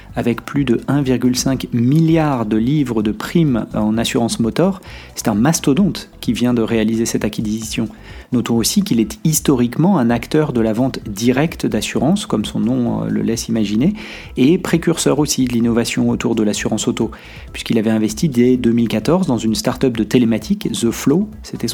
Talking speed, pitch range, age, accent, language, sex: 170 wpm, 115-140 Hz, 40-59, French, French, male